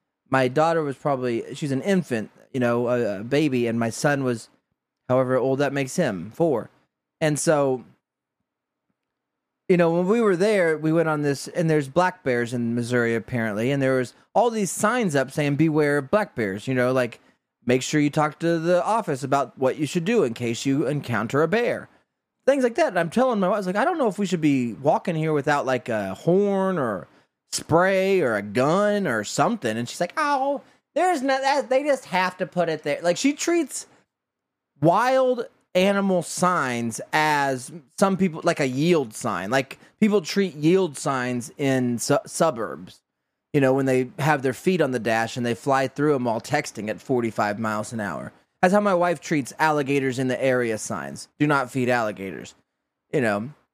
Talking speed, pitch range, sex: 195 wpm, 125-185 Hz, male